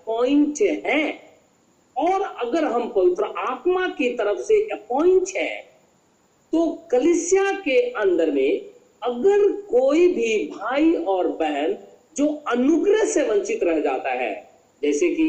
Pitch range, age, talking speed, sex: 245-405 Hz, 50-69, 100 wpm, male